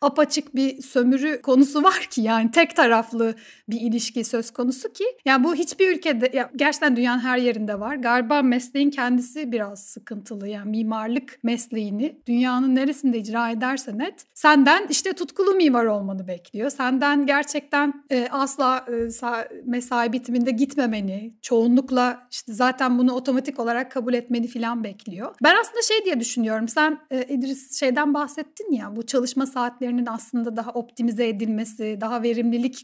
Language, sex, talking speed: Turkish, female, 140 wpm